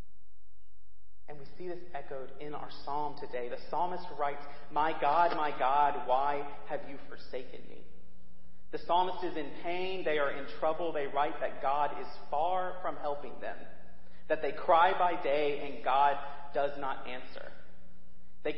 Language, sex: English, male